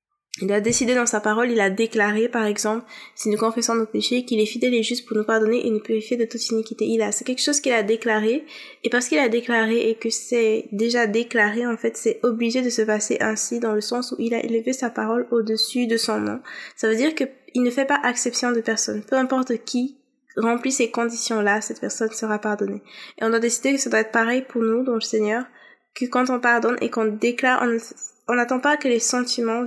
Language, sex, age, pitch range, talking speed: French, female, 20-39, 220-245 Hz, 235 wpm